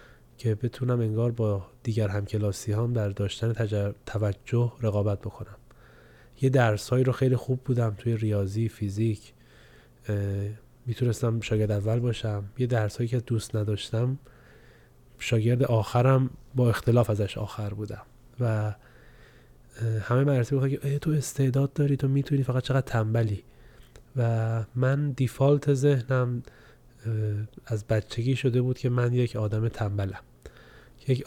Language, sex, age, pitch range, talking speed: English, male, 20-39, 105-125 Hz, 125 wpm